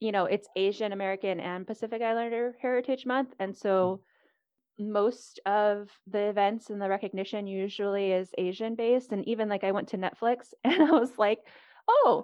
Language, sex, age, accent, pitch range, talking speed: English, female, 10-29, American, 180-235 Hz, 170 wpm